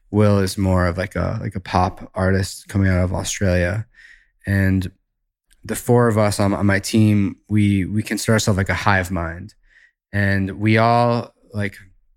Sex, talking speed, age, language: male, 175 wpm, 20-39, English